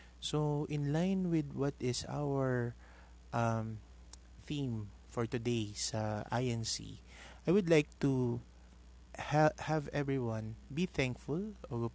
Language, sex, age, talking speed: Filipino, male, 20-39, 115 wpm